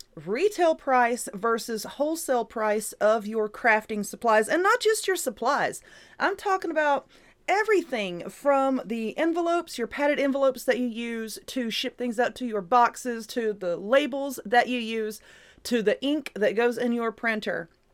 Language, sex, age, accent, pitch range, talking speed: English, female, 30-49, American, 215-285 Hz, 160 wpm